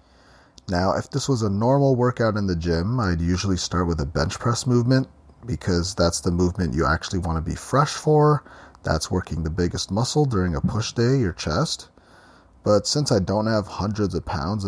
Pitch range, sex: 90-125 Hz, male